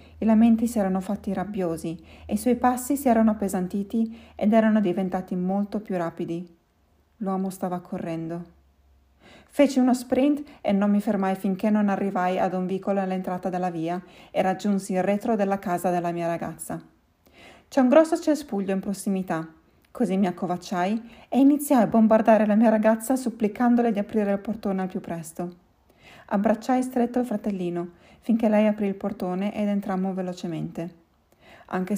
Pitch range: 180-225 Hz